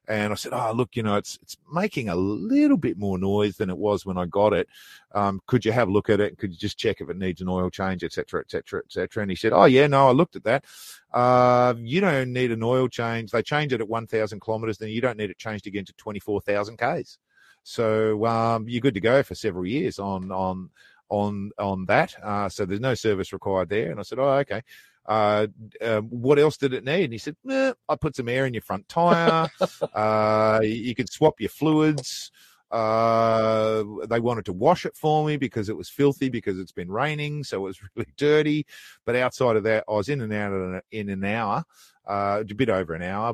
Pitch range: 100-130 Hz